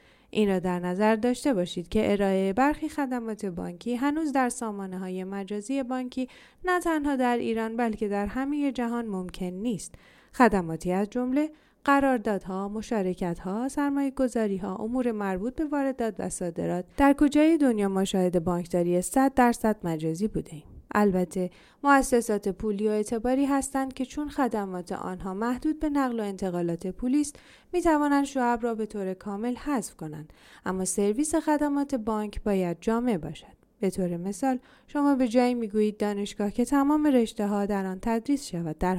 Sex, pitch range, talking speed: female, 195-265 Hz, 145 wpm